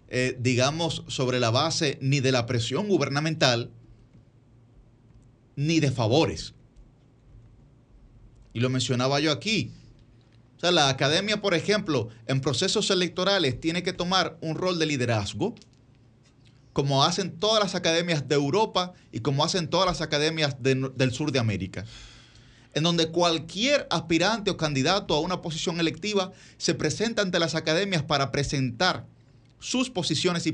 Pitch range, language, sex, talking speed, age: 125-170 Hz, Spanish, male, 140 wpm, 30-49